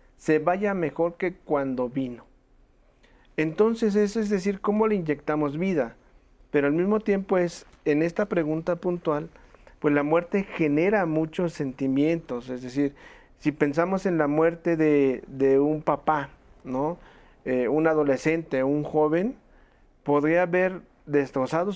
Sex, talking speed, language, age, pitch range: male, 135 wpm, Spanish, 40-59, 140-175 Hz